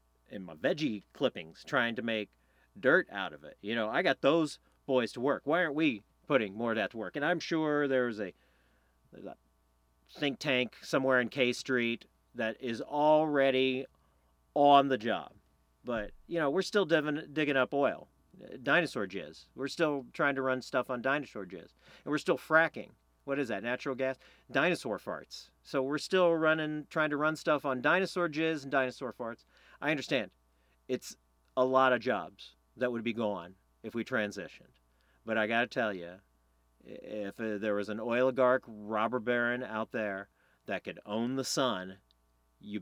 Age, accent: 40-59, American